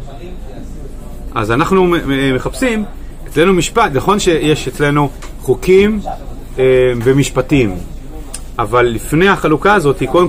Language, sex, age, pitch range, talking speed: Hebrew, male, 30-49, 120-155 Hz, 105 wpm